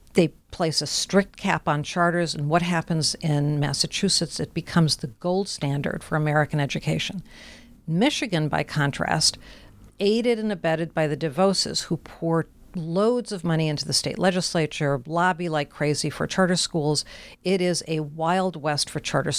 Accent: American